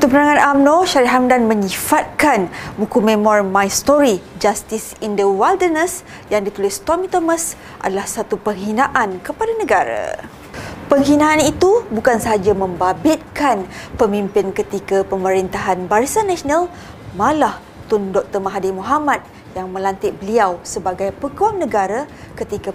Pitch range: 195-285 Hz